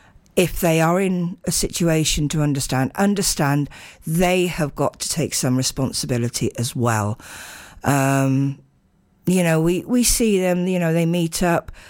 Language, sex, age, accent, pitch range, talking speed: English, female, 50-69, British, 135-180 Hz, 150 wpm